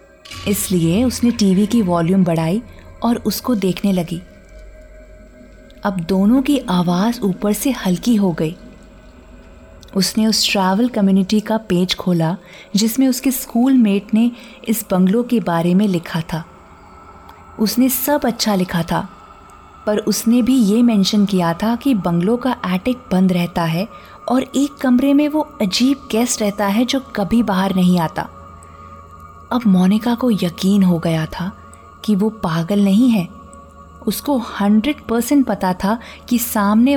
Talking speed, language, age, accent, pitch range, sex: 145 wpm, Hindi, 20-39, native, 180-240 Hz, female